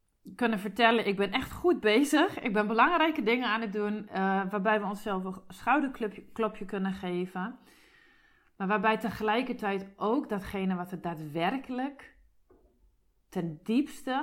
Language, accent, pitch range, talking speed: Dutch, Dutch, 195-240 Hz, 135 wpm